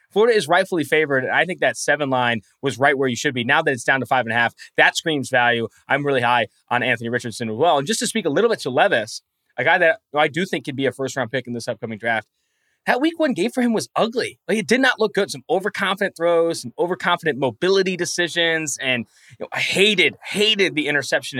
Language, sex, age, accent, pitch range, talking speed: English, male, 20-39, American, 130-180 Hz, 250 wpm